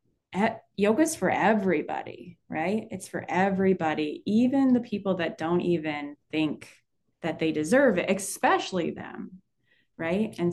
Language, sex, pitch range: English, female, 160-195 Hz